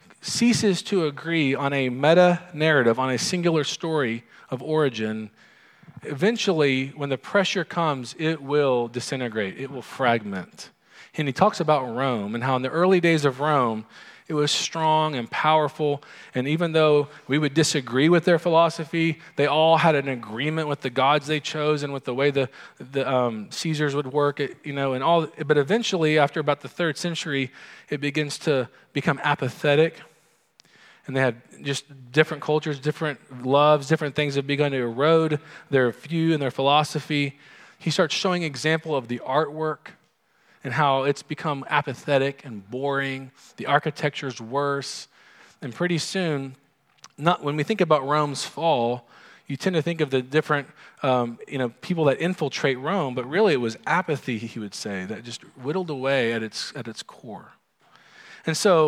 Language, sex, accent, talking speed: English, male, American, 170 wpm